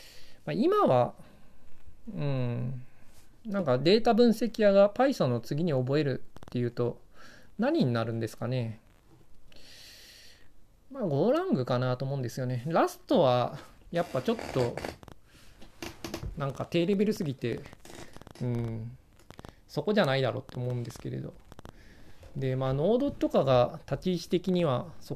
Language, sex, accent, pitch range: Japanese, male, native, 125-190 Hz